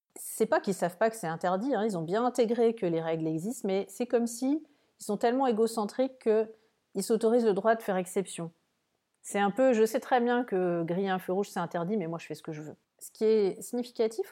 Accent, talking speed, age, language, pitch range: French, 245 wpm, 40-59, French, 175-225 Hz